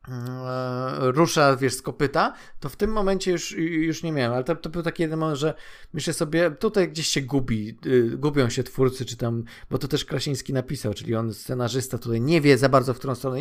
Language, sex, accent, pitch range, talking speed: Polish, male, native, 125-165 Hz, 210 wpm